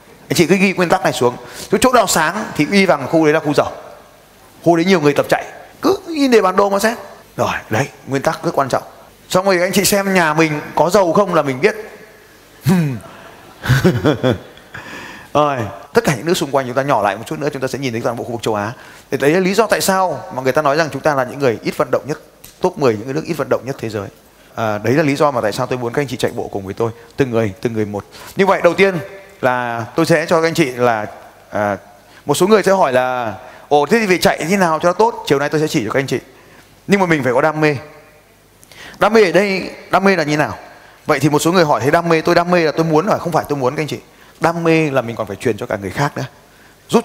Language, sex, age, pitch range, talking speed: Vietnamese, male, 20-39, 130-190 Hz, 280 wpm